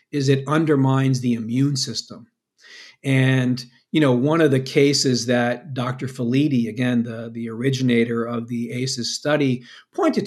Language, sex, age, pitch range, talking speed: English, male, 50-69, 125-155 Hz, 145 wpm